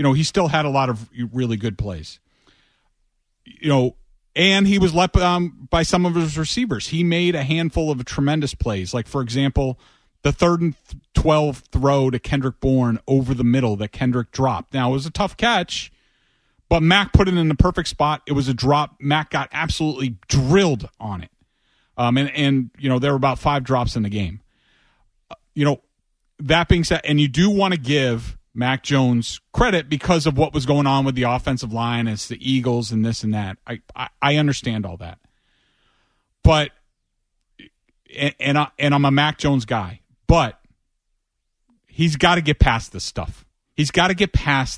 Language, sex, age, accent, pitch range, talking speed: English, male, 40-59, American, 120-155 Hz, 195 wpm